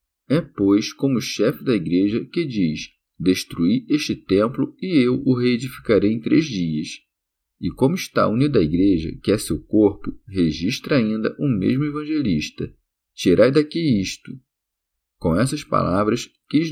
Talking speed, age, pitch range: 145 wpm, 40-59, 90-135 Hz